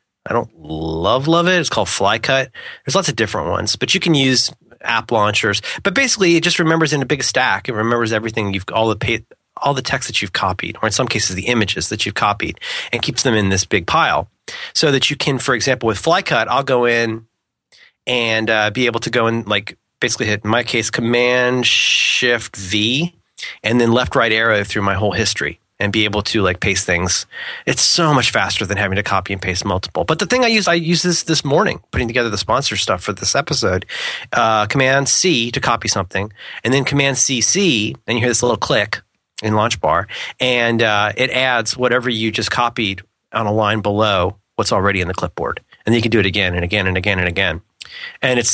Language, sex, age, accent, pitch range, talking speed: English, male, 30-49, American, 105-130 Hz, 220 wpm